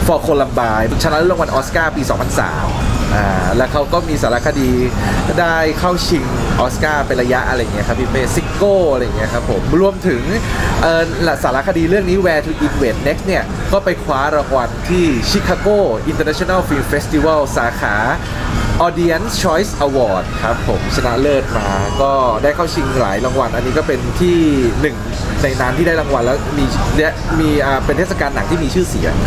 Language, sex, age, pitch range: Thai, male, 20-39, 120-170 Hz